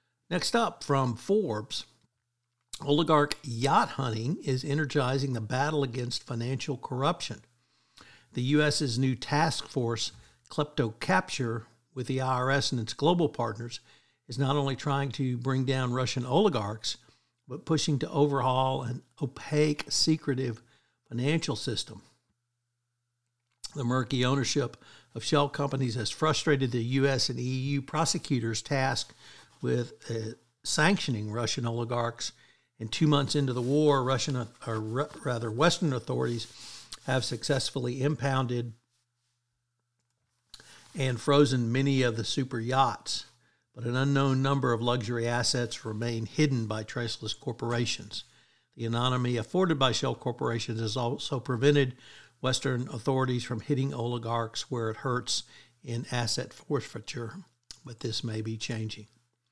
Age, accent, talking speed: 60-79, American, 120 wpm